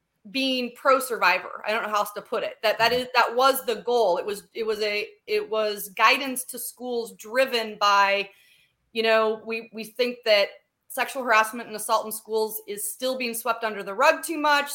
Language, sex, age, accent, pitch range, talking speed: English, female, 30-49, American, 215-265 Hz, 205 wpm